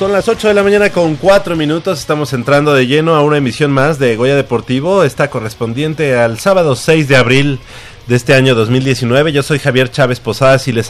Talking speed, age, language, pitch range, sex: 210 wpm, 30-49, Spanish, 105-140 Hz, male